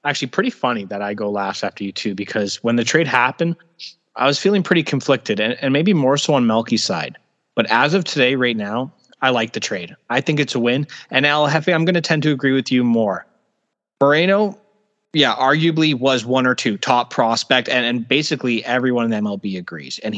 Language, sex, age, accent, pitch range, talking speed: English, male, 30-49, American, 110-145 Hz, 215 wpm